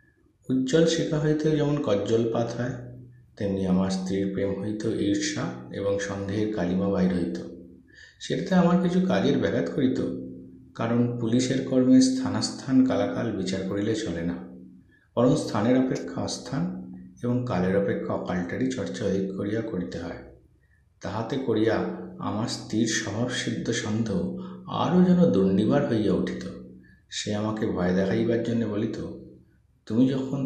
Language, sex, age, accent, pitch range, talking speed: Bengali, male, 50-69, native, 85-130 Hz, 120 wpm